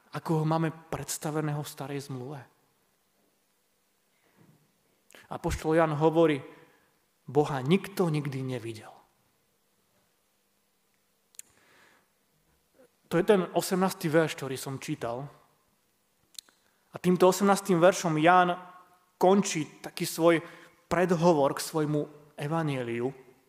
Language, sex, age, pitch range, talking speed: Slovak, male, 30-49, 150-185 Hz, 90 wpm